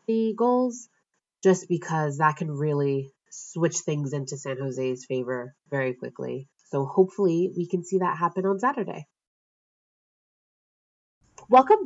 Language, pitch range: English, 155-190 Hz